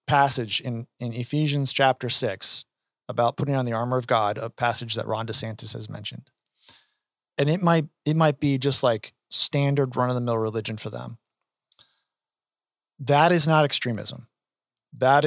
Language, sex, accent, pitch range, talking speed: English, male, American, 115-140 Hz, 160 wpm